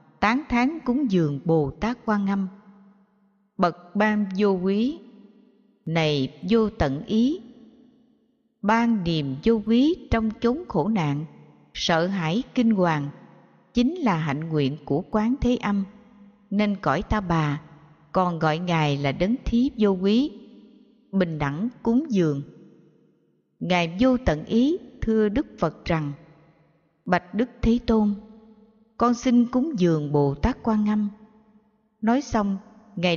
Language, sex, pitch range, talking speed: Vietnamese, female, 160-230 Hz, 135 wpm